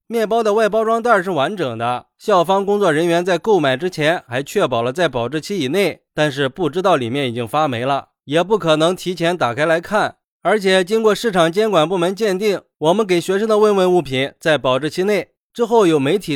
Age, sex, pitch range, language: 20-39, male, 145-205 Hz, Chinese